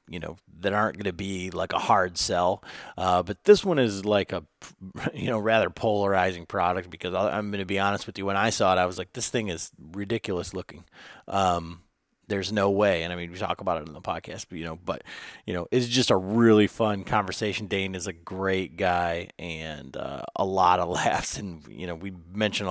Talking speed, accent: 225 wpm, American